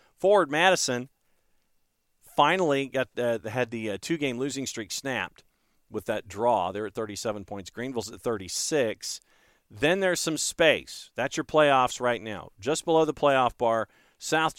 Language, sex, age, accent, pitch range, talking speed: English, male, 50-69, American, 105-145 Hz, 155 wpm